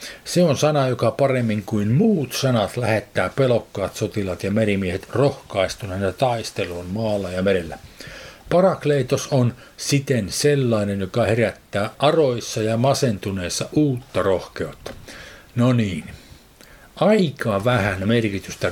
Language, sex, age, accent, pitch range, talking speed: Finnish, male, 50-69, native, 100-135 Hz, 110 wpm